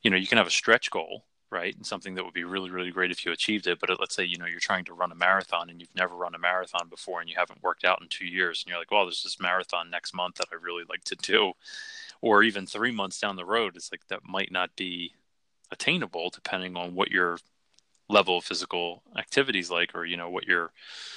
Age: 20-39